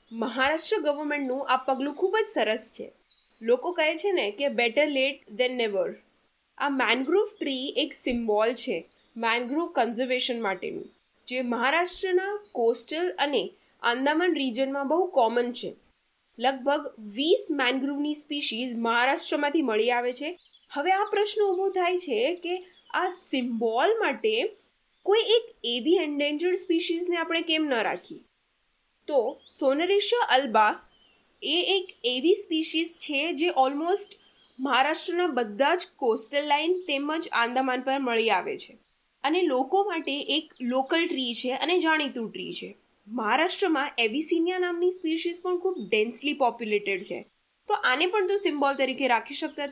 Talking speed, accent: 120 wpm, native